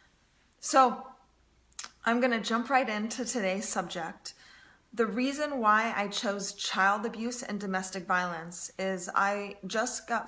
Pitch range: 190-225 Hz